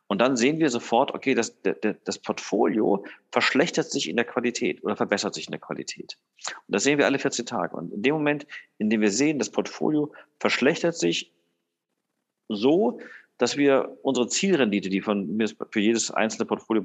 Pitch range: 105-130 Hz